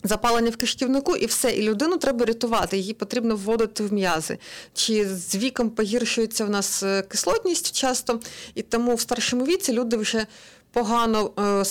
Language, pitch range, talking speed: Ukrainian, 205-255 Hz, 160 wpm